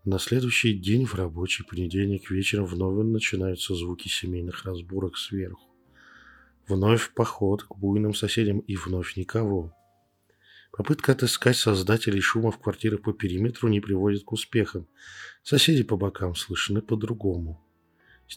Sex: male